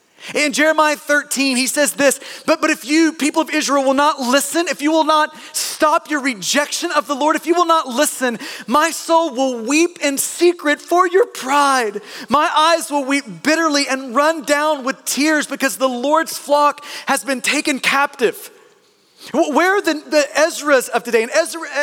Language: English